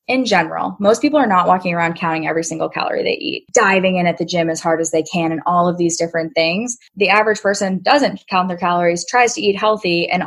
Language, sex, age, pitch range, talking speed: English, female, 10-29, 175-215 Hz, 245 wpm